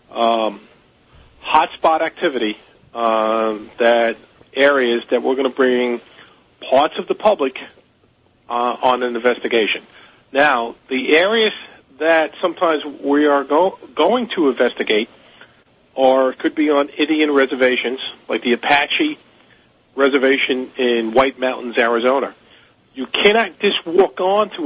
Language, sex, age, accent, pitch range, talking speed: English, male, 50-69, American, 120-160 Hz, 120 wpm